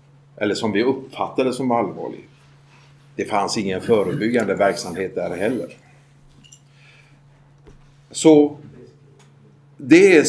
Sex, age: male, 50-69